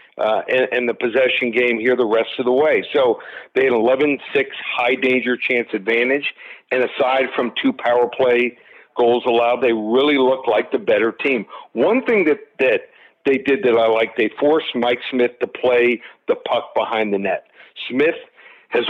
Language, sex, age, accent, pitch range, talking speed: English, male, 50-69, American, 125-155 Hz, 180 wpm